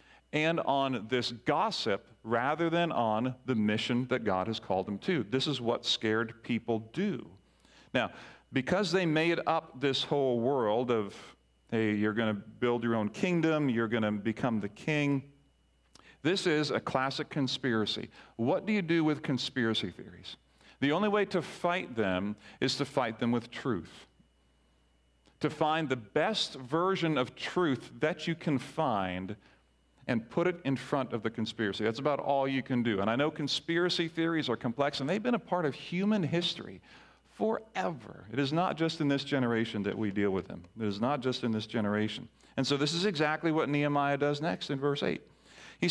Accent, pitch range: American, 115-165 Hz